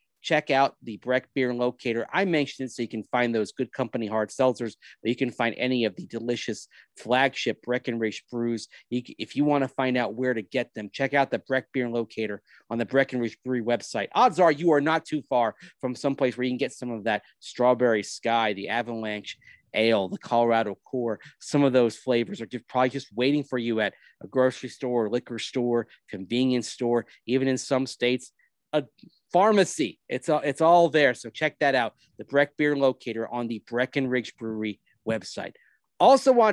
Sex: male